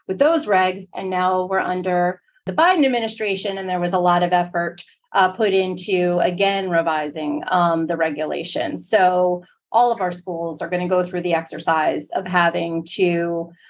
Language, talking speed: English, 175 wpm